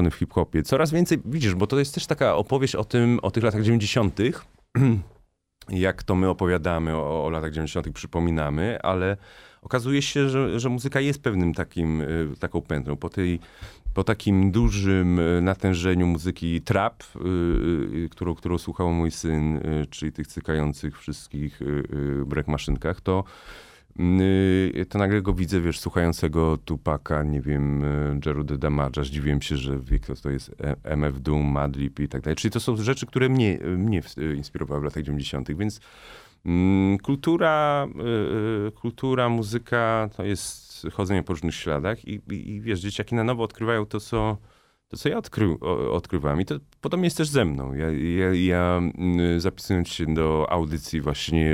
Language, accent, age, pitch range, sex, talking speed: Polish, native, 30-49, 75-105 Hz, male, 155 wpm